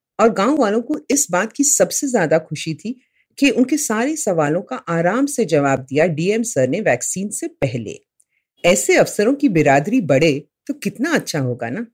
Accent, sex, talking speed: native, female, 75 wpm